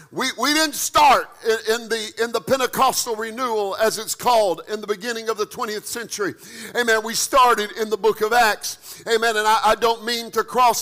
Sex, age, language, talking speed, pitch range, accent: male, 50-69, English, 205 wpm, 230-315 Hz, American